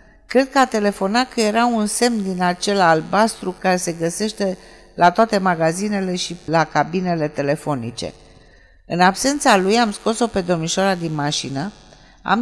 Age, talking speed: 50-69, 150 wpm